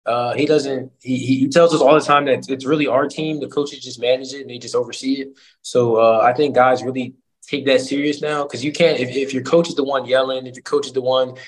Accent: American